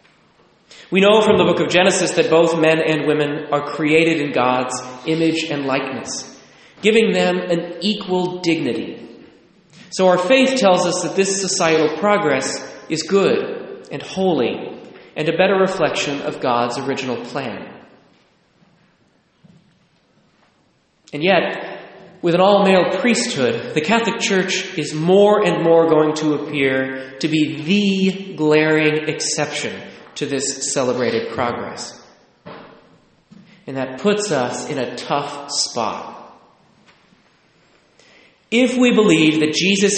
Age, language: 30-49, English